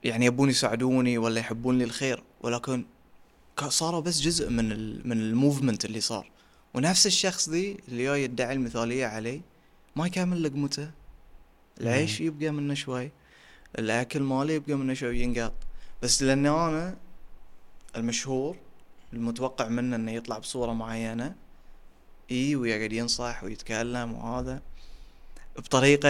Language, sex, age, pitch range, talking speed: Arabic, male, 20-39, 115-145 Hz, 125 wpm